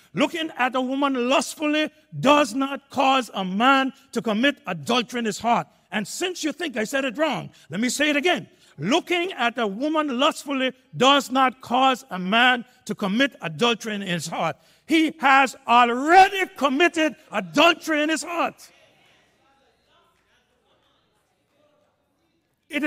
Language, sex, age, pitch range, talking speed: English, male, 60-79, 235-315 Hz, 140 wpm